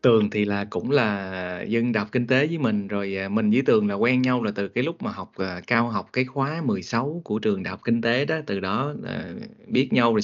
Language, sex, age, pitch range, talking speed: Vietnamese, male, 20-39, 105-135 Hz, 245 wpm